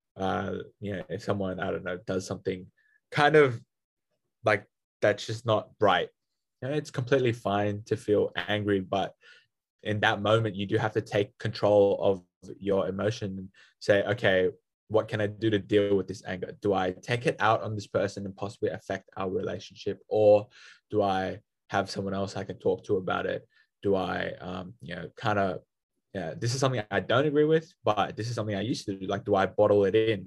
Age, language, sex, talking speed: 20-39, English, male, 200 wpm